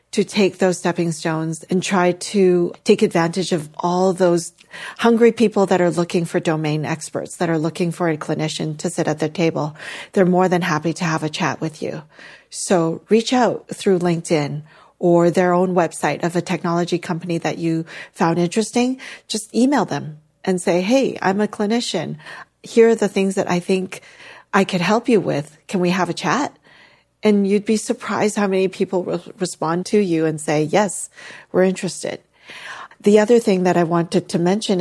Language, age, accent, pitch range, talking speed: English, 40-59, American, 170-210 Hz, 190 wpm